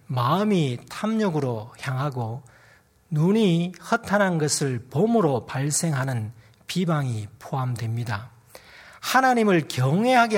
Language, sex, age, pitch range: Korean, male, 40-59, 125-185 Hz